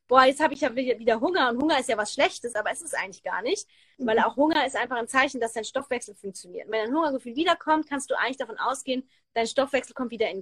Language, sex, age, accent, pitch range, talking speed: German, female, 20-39, German, 225-285 Hz, 255 wpm